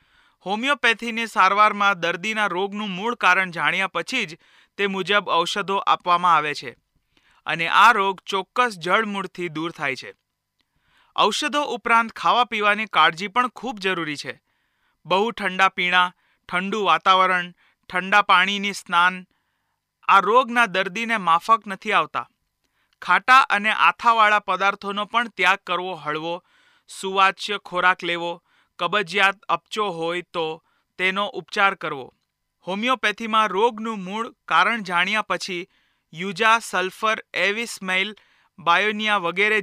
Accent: native